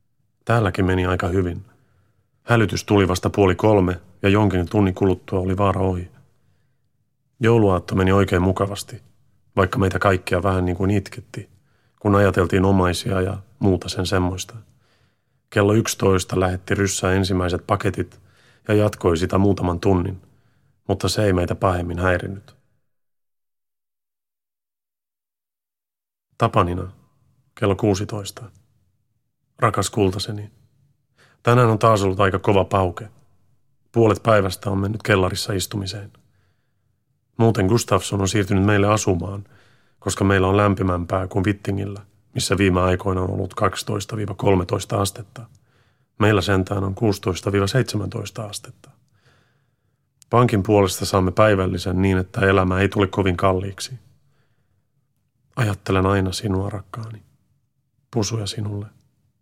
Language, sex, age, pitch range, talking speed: Finnish, male, 30-49, 95-120 Hz, 110 wpm